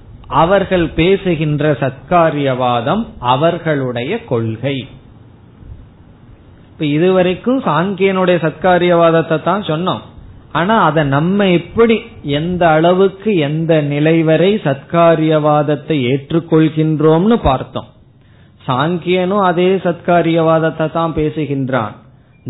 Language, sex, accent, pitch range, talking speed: Tamil, male, native, 130-180 Hz, 75 wpm